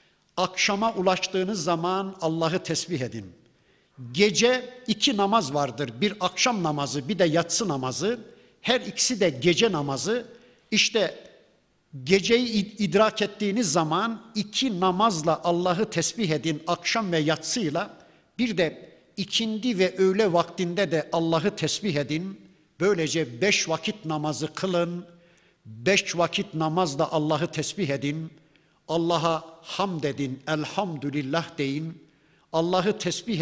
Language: Turkish